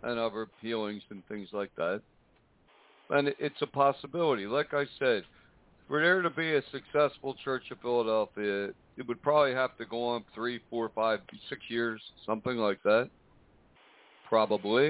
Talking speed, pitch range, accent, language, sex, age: 155 wpm, 110-130 Hz, American, English, male, 60-79